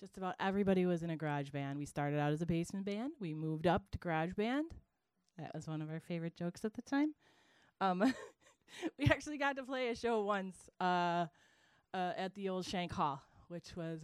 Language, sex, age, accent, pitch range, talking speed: English, female, 30-49, American, 145-185 Hz, 210 wpm